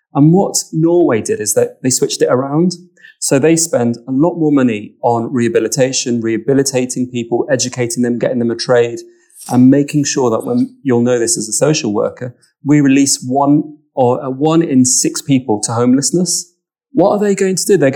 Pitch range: 120-160 Hz